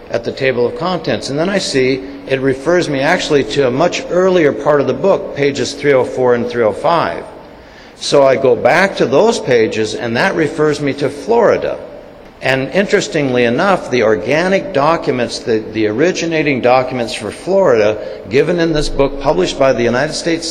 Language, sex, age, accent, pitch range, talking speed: English, male, 60-79, American, 120-150 Hz, 175 wpm